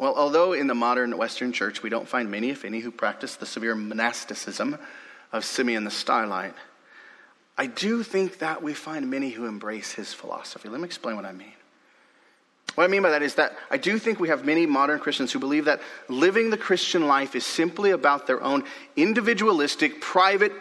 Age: 30-49